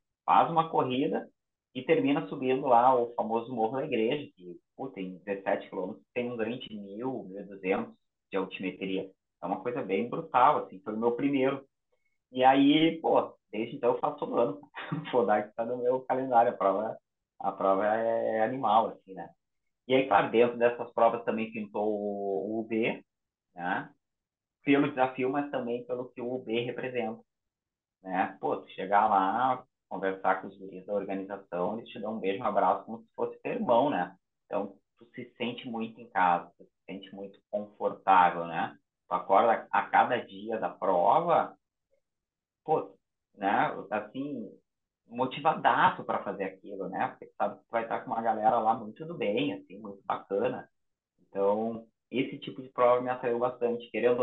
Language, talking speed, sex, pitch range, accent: Portuguese, 175 wpm, male, 100-125 Hz, Brazilian